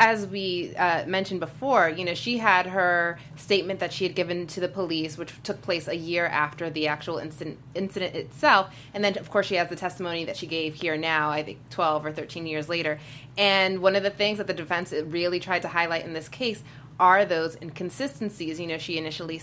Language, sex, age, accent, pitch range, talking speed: English, female, 20-39, American, 155-185 Hz, 220 wpm